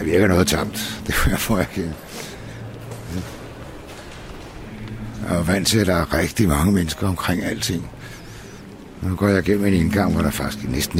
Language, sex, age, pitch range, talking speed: Danish, male, 60-79, 90-110 Hz, 155 wpm